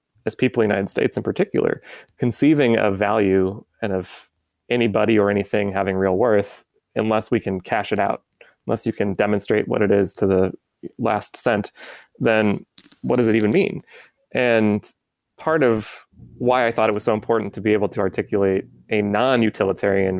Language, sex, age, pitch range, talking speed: English, male, 20-39, 100-115 Hz, 175 wpm